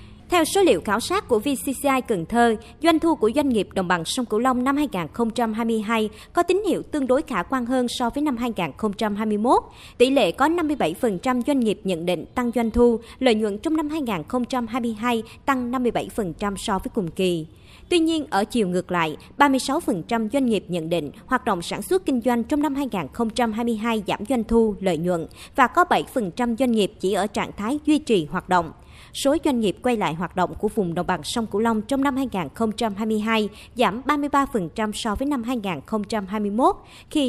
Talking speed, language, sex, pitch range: 190 wpm, Vietnamese, male, 205-270 Hz